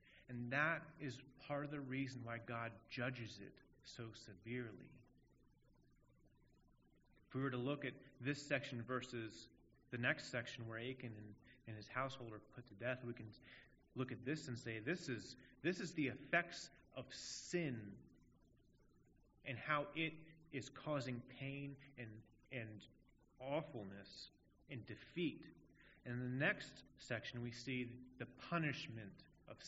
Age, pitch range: 30-49, 115-140 Hz